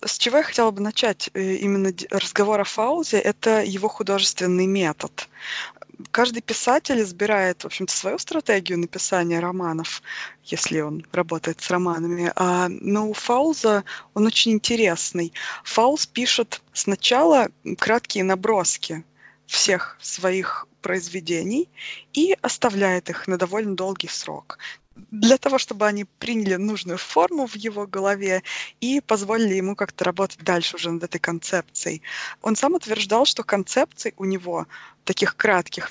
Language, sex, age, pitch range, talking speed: Russian, female, 20-39, 185-225 Hz, 125 wpm